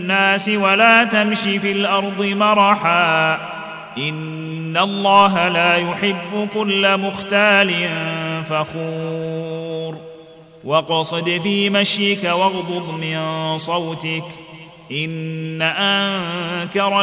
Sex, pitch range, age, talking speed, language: male, 160-200 Hz, 30-49, 70 wpm, Arabic